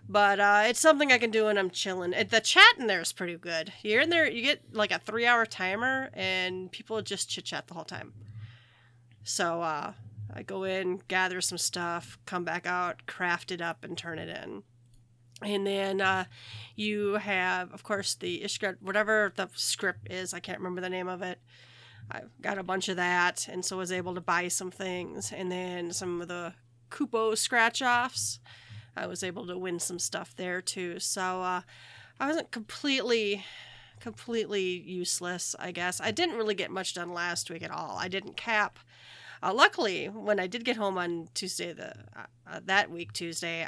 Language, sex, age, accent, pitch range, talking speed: English, female, 30-49, American, 170-200 Hz, 195 wpm